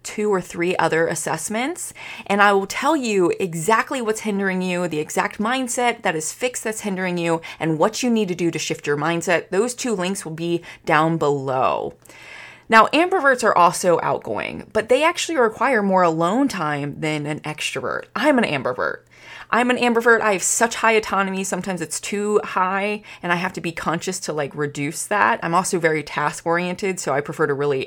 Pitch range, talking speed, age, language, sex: 150-205 Hz, 195 wpm, 20-39, English, female